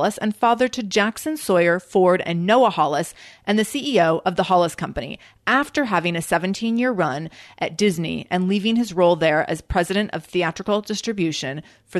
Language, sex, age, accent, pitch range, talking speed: English, female, 30-49, American, 170-215 Hz, 170 wpm